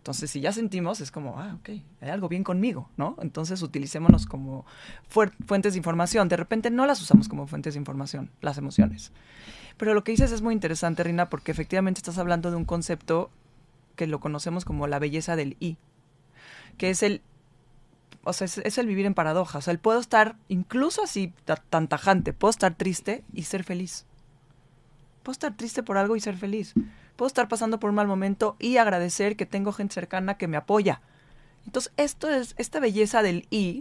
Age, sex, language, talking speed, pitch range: 20-39, female, Spanish, 200 wpm, 160-215 Hz